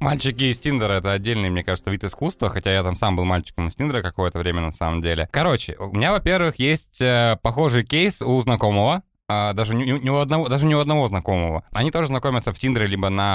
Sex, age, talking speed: male, 20-39, 205 wpm